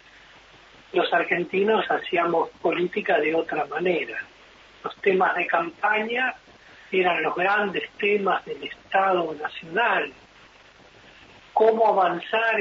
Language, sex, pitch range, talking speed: Spanish, male, 160-225 Hz, 95 wpm